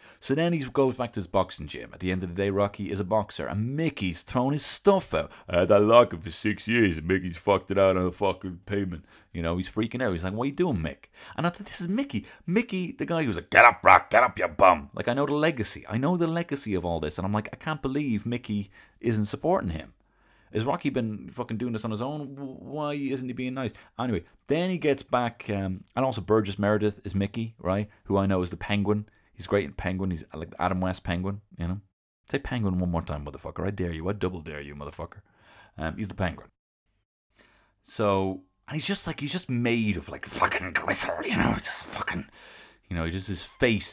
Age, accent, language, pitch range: 30-49, British, English, 90-125 Hz